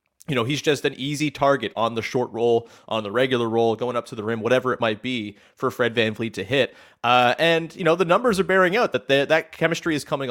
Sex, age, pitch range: male, 30-49, 110-150 Hz